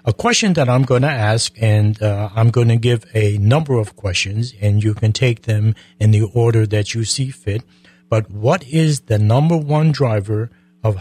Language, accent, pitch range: English, American, 105-130 Hz